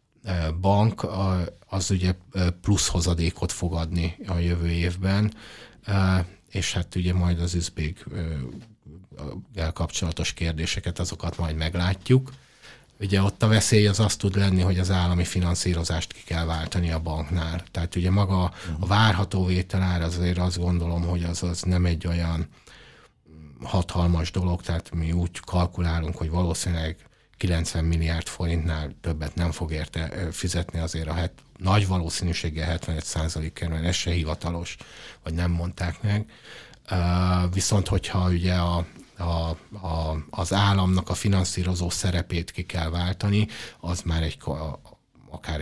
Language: Hungarian